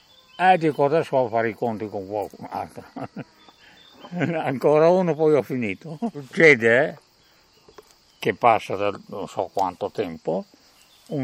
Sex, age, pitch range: male, 60-79, 105-135 Hz